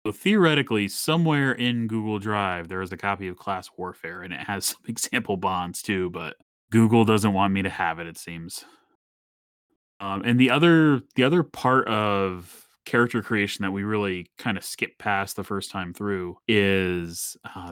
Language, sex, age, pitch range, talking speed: English, male, 20-39, 90-115 Hz, 185 wpm